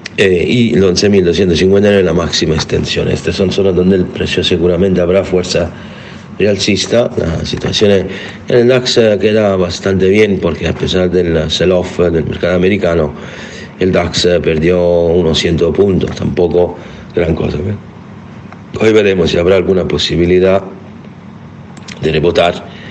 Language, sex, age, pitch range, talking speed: Spanish, male, 60-79, 85-100 Hz, 140 wpm